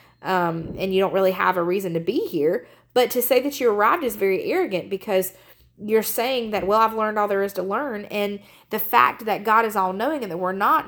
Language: English